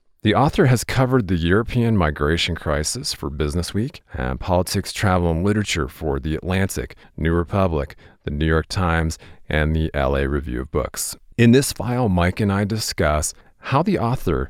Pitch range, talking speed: 80-100 Hz, 170 wpm